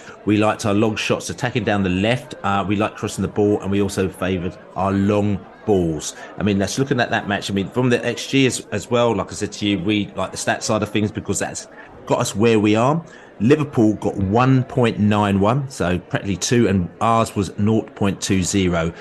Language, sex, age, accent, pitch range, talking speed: English, male, 30-49, British, 95-110 Hz, 225 wpm